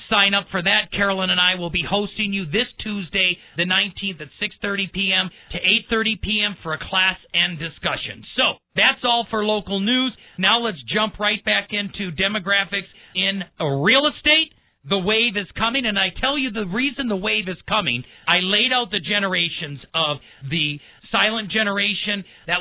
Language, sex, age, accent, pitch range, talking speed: English, male, 40-59, American, 175-210 Hz, 175 wpm